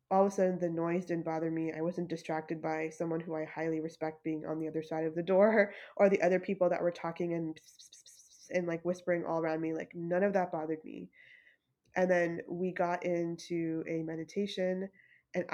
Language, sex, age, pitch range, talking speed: English, female, 20-39, 165-190 Hz, 210 wpm